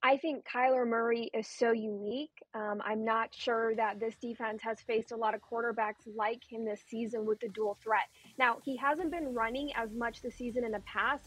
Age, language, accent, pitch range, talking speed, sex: 20-39, English, American, 225-255 Hz, 215 wpm, female